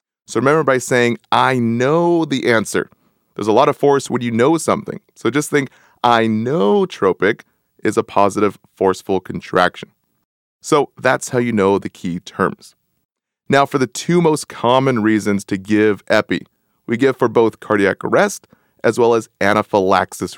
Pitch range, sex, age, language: 105-145 Hz, male, 30-49, English